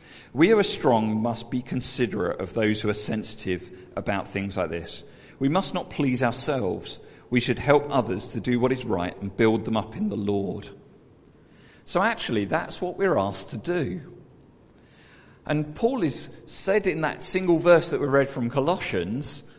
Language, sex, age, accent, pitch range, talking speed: English, male, 50-69, British, 115-150 Hz, 180 wpm